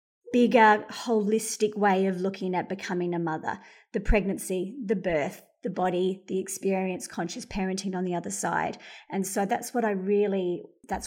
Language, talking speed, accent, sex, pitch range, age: English, 165 wpm, Australian, female, 185-220 Hz, 30-49